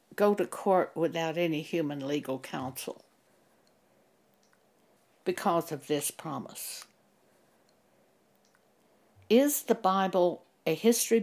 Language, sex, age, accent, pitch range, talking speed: English, female, 60-79, American, 160-205 Hz, 90 wpm